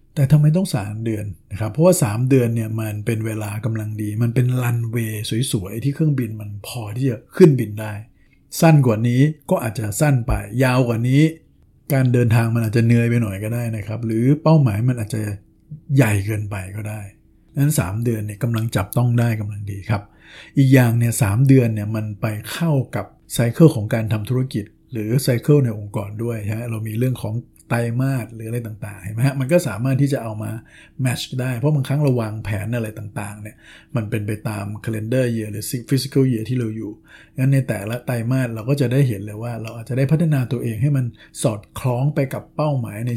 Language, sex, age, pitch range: Thai, male, 60-79, 110-135 Hz